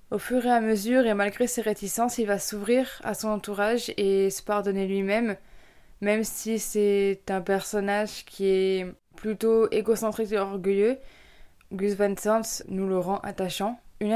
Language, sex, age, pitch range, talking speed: French, female, 20-39, 195-225 Hz, 160 wpm